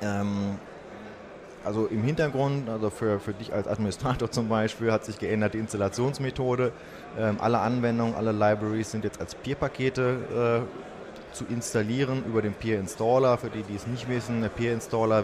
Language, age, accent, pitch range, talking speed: German, 20-39, German, 95-115 Hz, 150 wpm